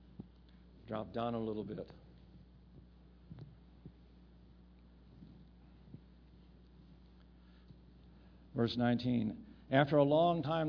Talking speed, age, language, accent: 60 wpm, 60-79, English, American